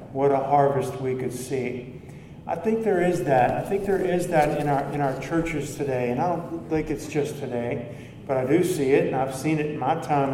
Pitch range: 135-165 Hz